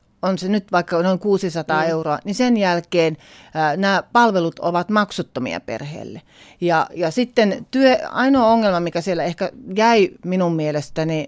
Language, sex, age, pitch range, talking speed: Finnish, female, 40-59, 150-190 Hz, 145 wpm